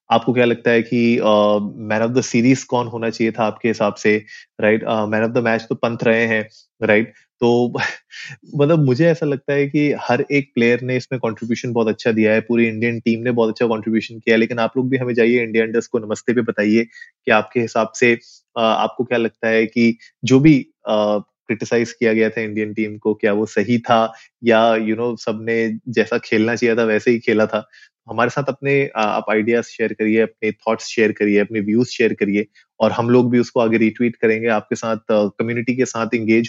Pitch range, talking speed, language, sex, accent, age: 110-120 Hz, 215 wpm, Hindi, male, native, 20-39